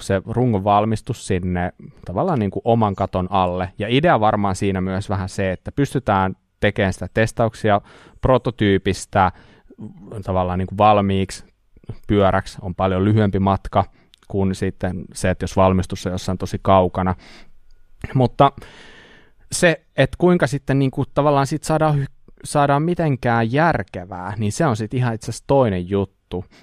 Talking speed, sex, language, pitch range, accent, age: 130 wpm, male, Finnish, 95-115 Hz, native, 20-39